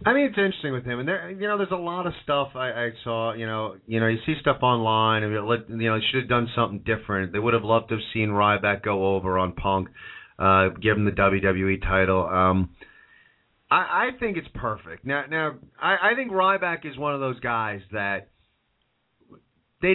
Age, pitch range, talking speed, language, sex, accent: 40-59, 110-155 Hz, 220 wpm, English, male, American